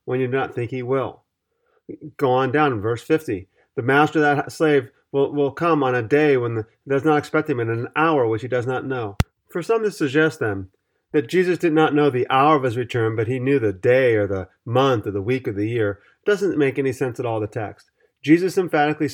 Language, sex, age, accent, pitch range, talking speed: English, male, 40-59, American, 115-150 Hz, 240 wpm